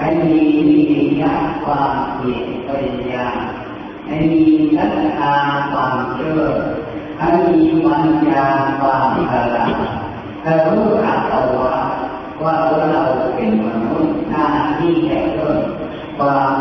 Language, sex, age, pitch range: Thai, female, 40-59, 115-180 Hz